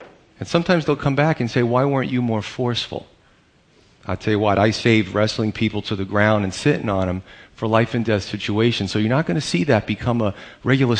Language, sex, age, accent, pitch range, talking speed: English, male, 40-59, American, 105-130 Hz, 230 wpm